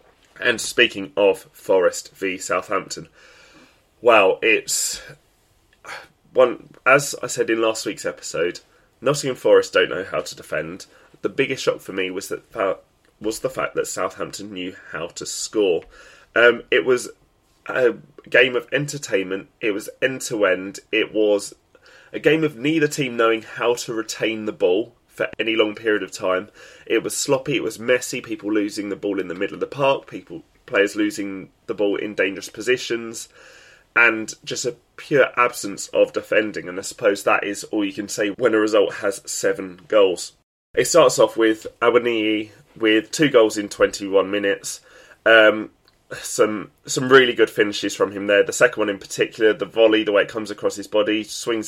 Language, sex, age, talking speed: English, male, 20-39, 175 wpm